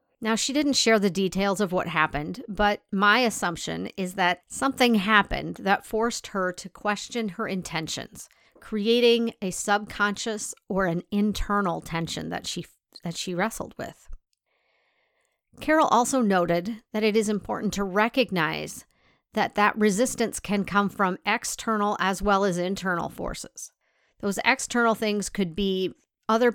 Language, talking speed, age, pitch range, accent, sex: English, 140 wpm, 40-59, 185-225 Hz, American, female